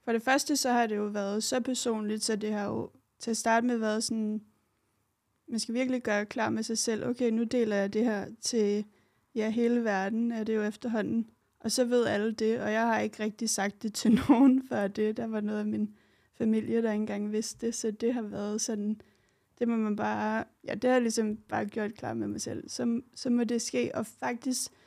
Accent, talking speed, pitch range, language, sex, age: native, 230 wpm, 215-240 Hz, Danish, female, 30-49